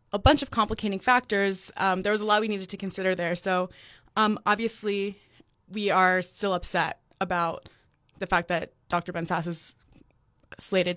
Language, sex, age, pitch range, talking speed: English, female, 20-39, 175-200 Hz, 170 wpm